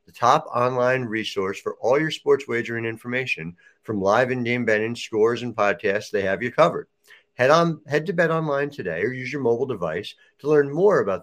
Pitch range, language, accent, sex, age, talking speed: 105-150 Hz, English, American, male, 50-69, 190 wpm